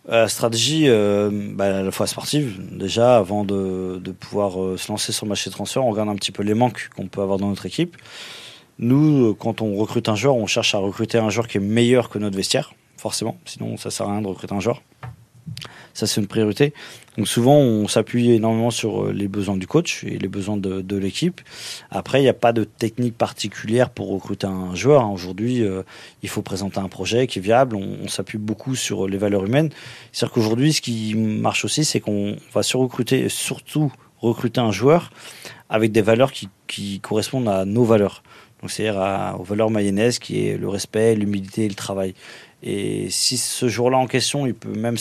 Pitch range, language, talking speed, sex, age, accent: 100-120 Hz, French, 210 wpm, male, 30-49, French